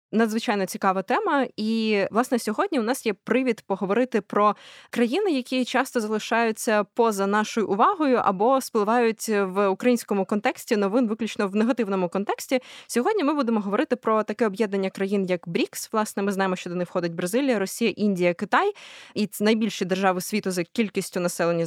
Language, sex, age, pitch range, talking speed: Ukrainian, female, 20-39, 190-240 Hz, 160 wpm